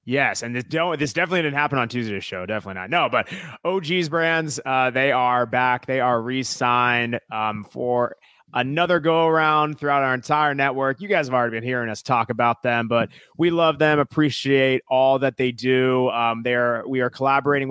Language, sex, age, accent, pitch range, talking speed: English, male, 30-49, American, 125-150 Hz, 195 wpm